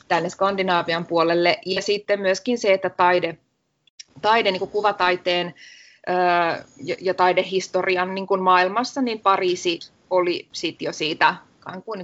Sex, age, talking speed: female, 20-39, 120 wpm